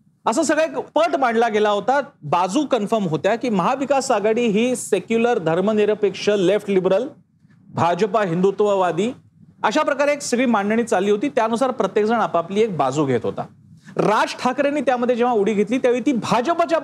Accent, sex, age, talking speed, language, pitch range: native, male, 40-59, 155 wpm, Marathi, 190-245 Hz